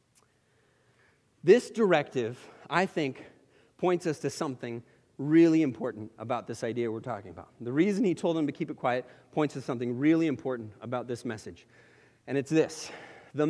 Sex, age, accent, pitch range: male, 40-59, American, 130-180 Hz